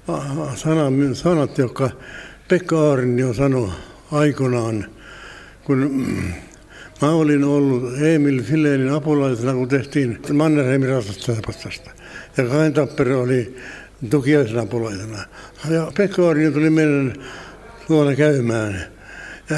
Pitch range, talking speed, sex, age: 130-150 Hz, 95 wpm, male, 60-79